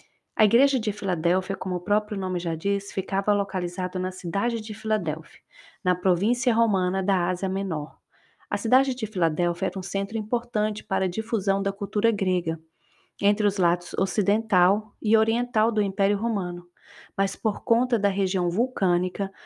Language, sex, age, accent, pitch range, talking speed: Portuguese, female, 30-49, Brazilian, 185-220 Hz, 155 wpm